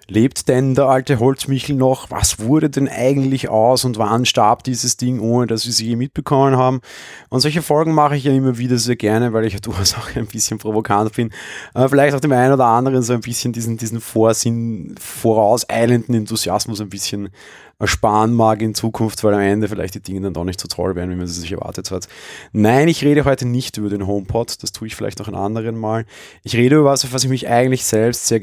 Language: German